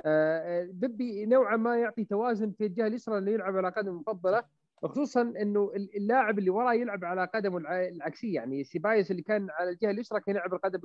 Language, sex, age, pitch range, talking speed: Arabic, male, 30-49, 185-230 Hz, 185 wpm